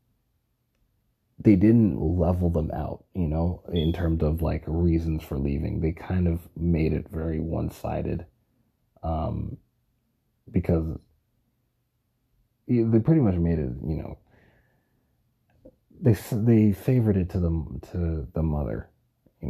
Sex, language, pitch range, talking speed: male, English, 85-110 Hz, 125 wpm